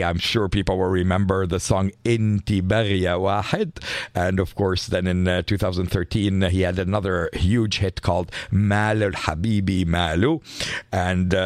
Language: English